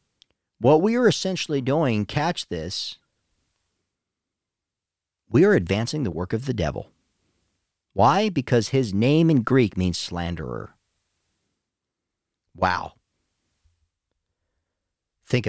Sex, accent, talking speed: male, American, 95 wpm